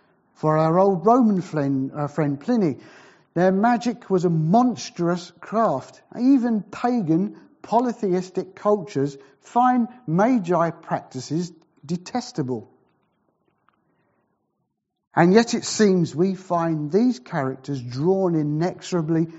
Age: 50-69